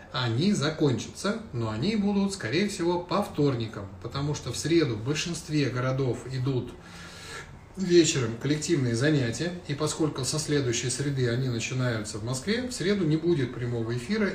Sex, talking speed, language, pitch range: male, 145 wpm, Russian, 115-155 Hz